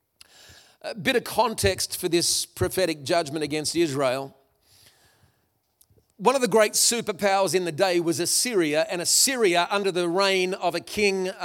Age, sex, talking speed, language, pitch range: 40-59, male, 145 wpm, English, 170-215 Hz